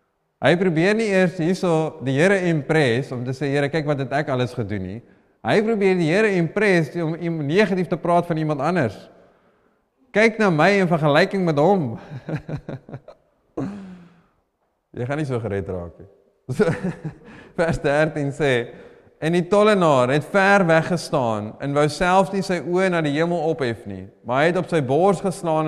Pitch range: 130-175 Hz